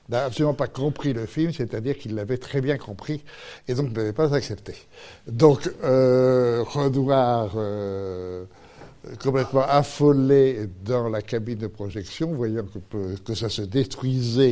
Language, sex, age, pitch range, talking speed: French, male, 60-79, 105-135 Hz, 145 wpm